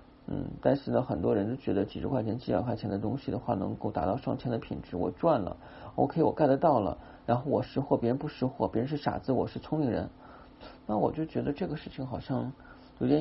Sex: male